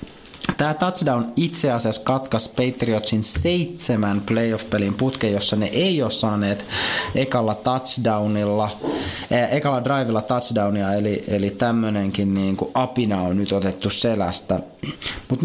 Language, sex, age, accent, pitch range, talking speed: Finnish, male, 20-39, native, 100-125 Hz, 120 wpm